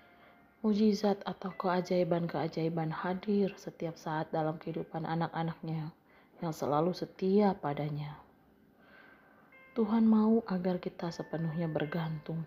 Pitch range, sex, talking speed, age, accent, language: 165-205 Hz, female, 90 wpm, 30-49, native, Indonesian